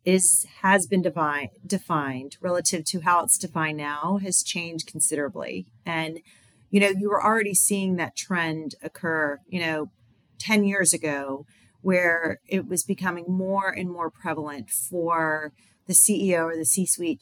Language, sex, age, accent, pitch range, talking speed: English, female, 30-49, American, 155-185 Hz, 145 wpm